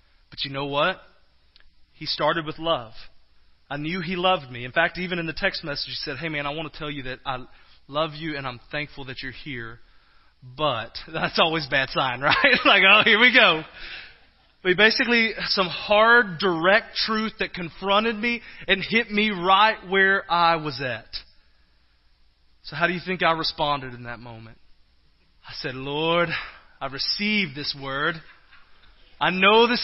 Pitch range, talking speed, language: 145-225 Hz, 180 wpm, English